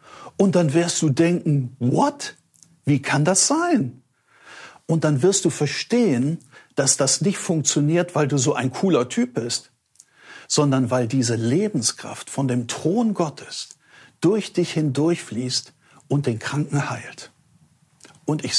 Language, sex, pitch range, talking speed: German, male, 135-180 Hz, 140 wpm